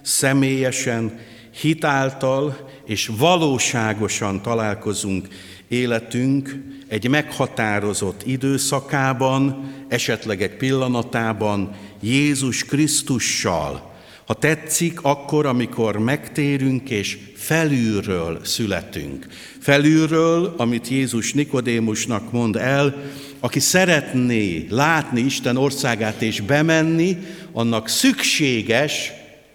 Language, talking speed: Hungarian, 75 wpm